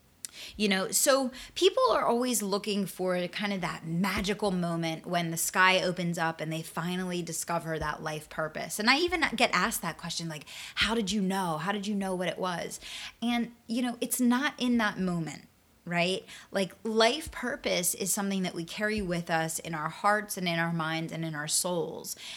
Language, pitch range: English, 170-225 Hz